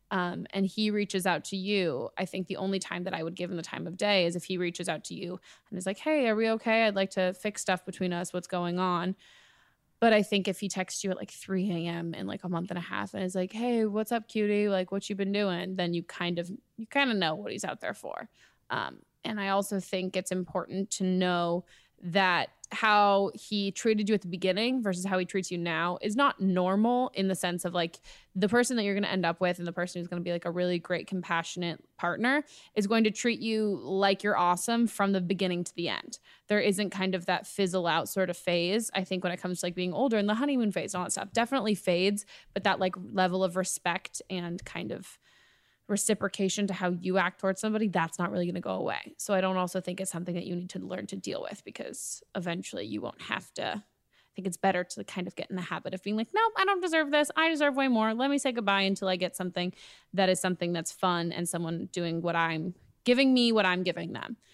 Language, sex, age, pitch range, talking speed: English, female, 20-39, 180-210 Hz, 255 wpm